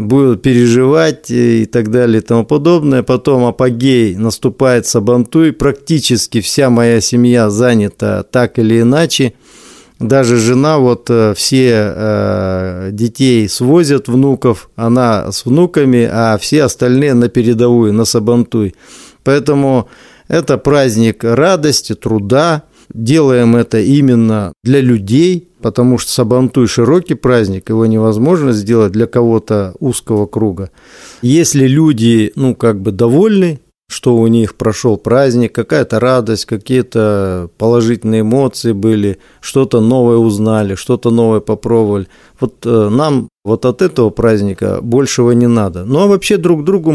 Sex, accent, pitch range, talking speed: male, native, 110-135 Hz, 120 wpm